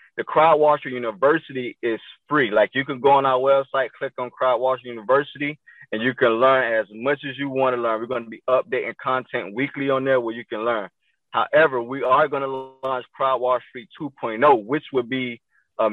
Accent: American